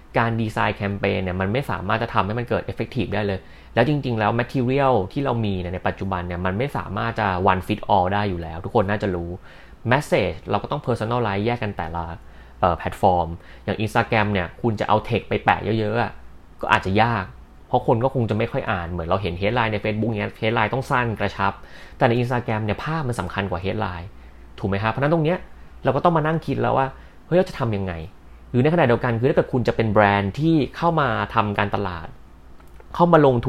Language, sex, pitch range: Thai, male, 95-120 Hz